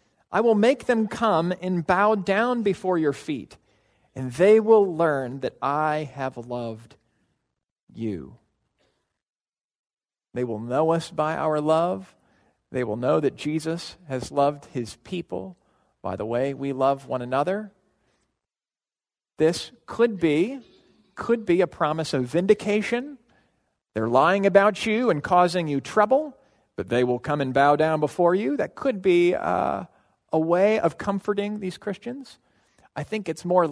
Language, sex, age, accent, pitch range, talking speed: English, male, 40-59, American, 135-210 Hz, 150 wpm